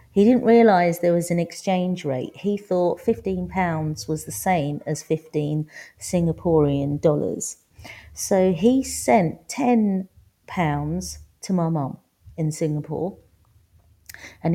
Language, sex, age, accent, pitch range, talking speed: English, female, 40-59, British, 155-210 Hz, 125 wpm